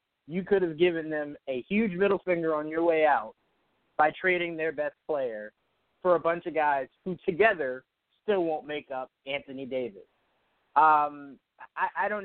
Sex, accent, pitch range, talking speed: male, American, 135-165 Hz, 170 wpm